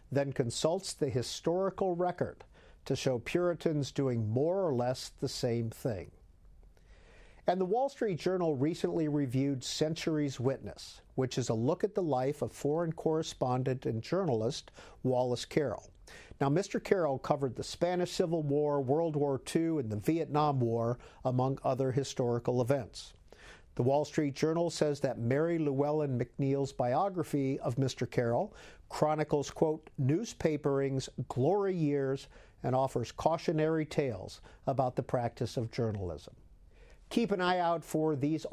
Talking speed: 140 wpm